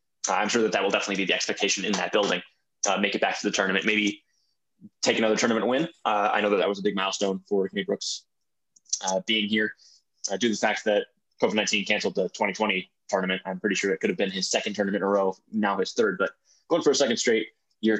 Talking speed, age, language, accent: 245 wpm, 20-39, English, American